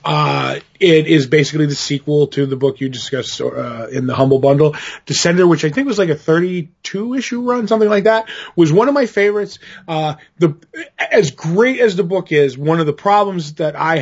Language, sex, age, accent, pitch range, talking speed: English, male, 20-39, American, 145-170 Hz, 205 wpm